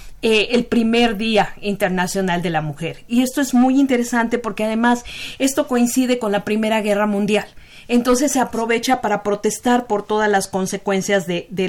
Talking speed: 170 wpm